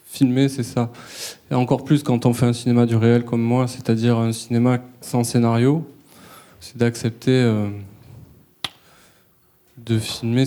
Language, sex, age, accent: French, male, 20-39, French